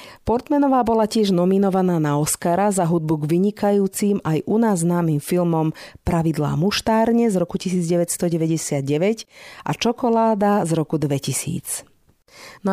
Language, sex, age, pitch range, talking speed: Slovak, female, 40-59, 155-200 Hz, 125 wpm